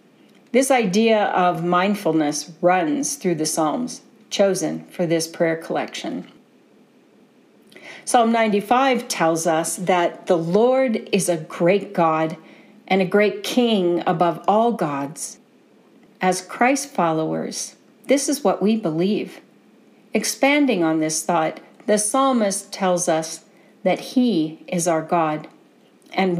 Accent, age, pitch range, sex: American, 40-59, 165-225 Hz, female